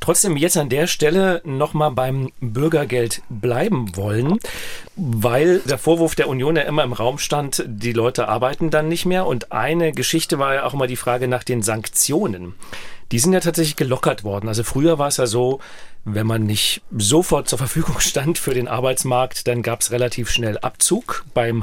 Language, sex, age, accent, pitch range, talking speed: German, male, 40-59, German, 115-150 Hz, 185 wpm